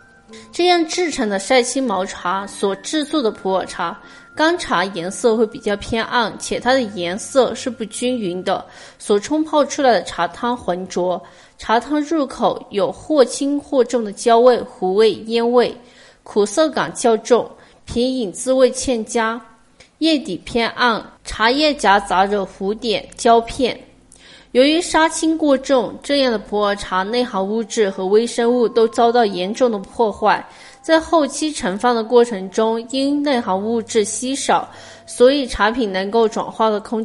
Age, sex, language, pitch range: 20-39, female, Chinese, 210-265 Hz